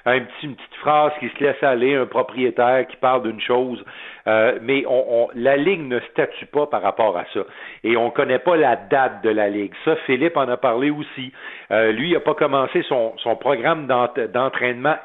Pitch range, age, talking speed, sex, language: 125-175 Hz, 50-69, 210 wpm, male, French